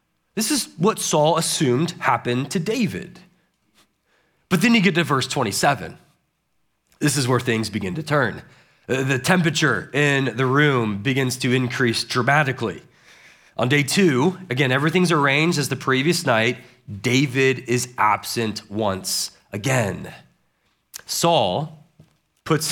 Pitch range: 135-180 Hz